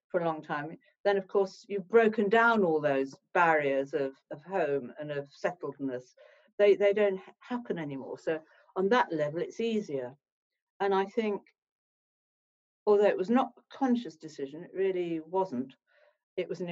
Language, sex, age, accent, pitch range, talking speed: English, female, 50-69, British, 155-200 Hz, 165 wpm